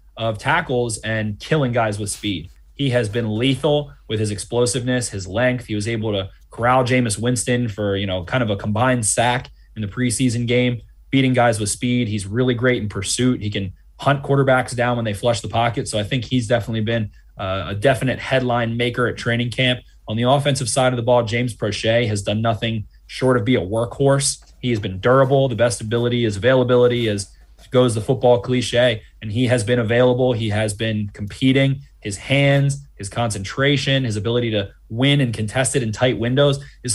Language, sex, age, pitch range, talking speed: English, male, 20-39, 110-125 Hz, 200 wpm